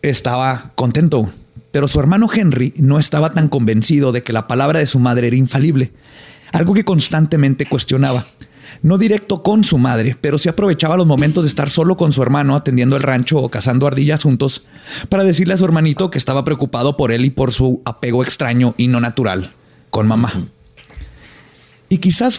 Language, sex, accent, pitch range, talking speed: Spanish, male, Mexican, 130-165 Hz, 180 wpm